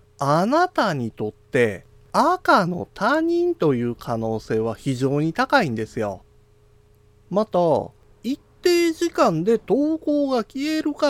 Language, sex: Japanese, male